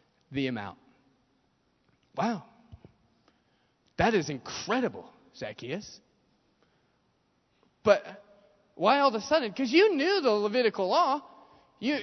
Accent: American